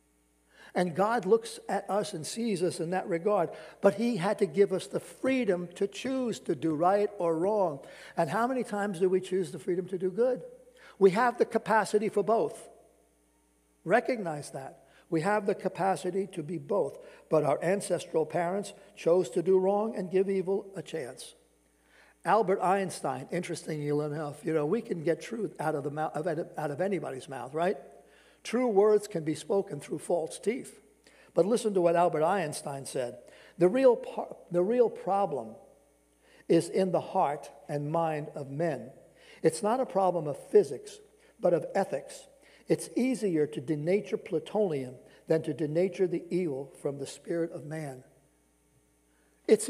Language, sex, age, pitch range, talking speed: English, male, 60-79, 155-210 Hz, 165 wpm